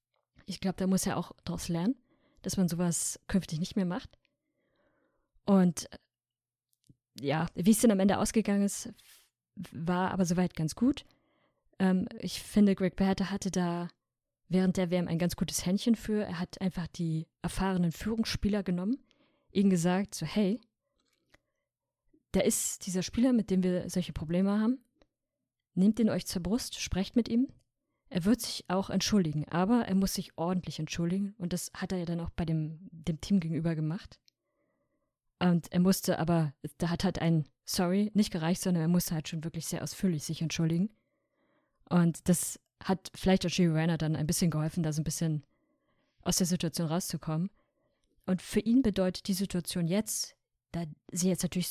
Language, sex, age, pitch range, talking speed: German, female, 20-39, 170-200 Hz, 170 wpm